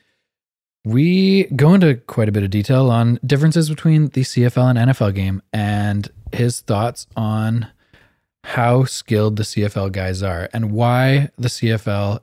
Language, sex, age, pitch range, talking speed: English, male, 20-39, 105-130 Hz, 145 wpm